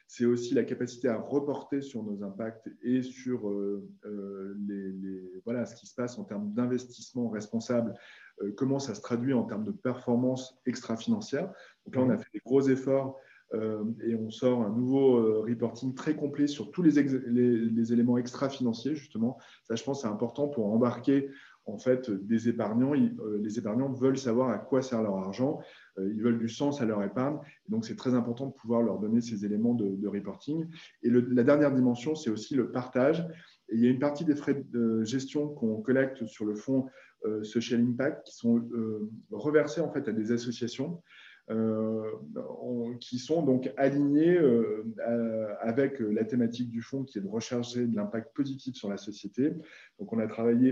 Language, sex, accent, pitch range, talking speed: French, male, French, 110-135 Hz, 190 wpm